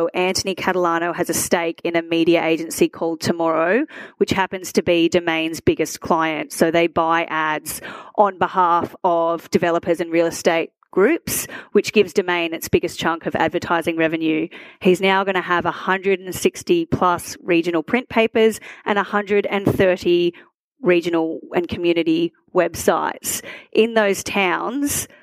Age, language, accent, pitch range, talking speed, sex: 30-49, English, Australian, 170-205 Hz, 140 wpm, female